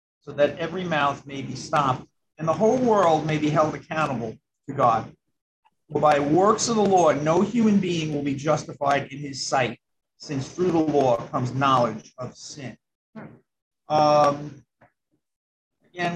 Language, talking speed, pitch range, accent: English, 155 wpm, 140-170 Hz, American